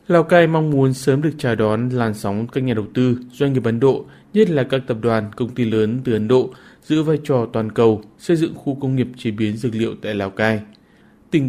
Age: 20-39